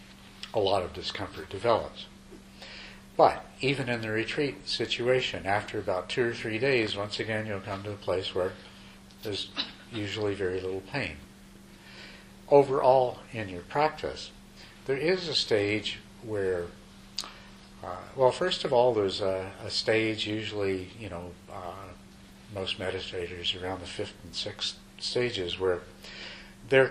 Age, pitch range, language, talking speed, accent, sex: 50-69, 95-115 Hz, English, 140 wpm, American, male